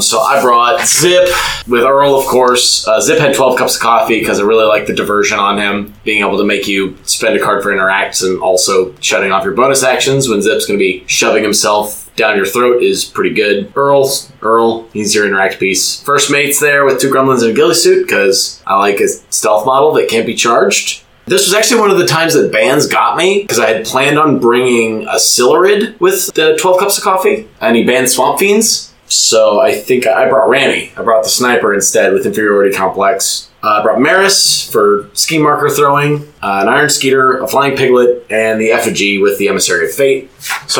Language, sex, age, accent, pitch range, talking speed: English, male, 20-39, American, 105-155 Hz, 215 wpm